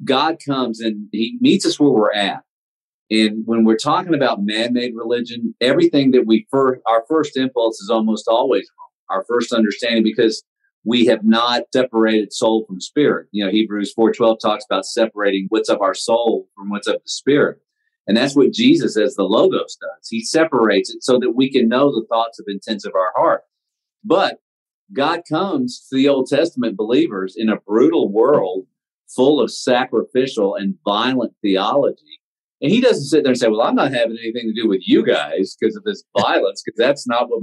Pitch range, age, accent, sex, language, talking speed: 110-170 Hz, 40-59, American, male, English, 195 wpm